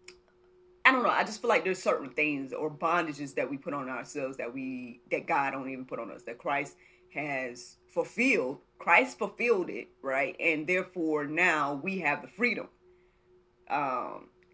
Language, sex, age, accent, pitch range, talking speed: English, female, 30-49, American, 140-180 Hz, 175 wpm